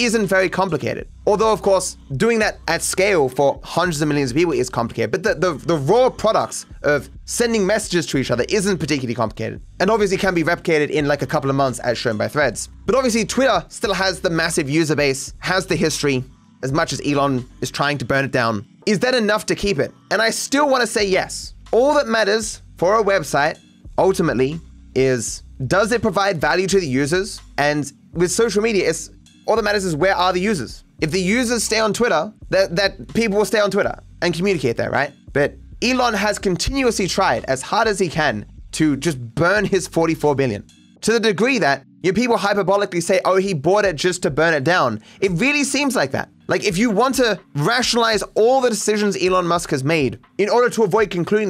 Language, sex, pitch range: English, male, 150-210 Hz